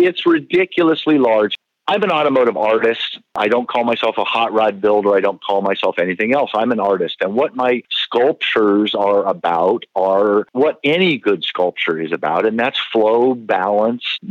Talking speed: 170 wpm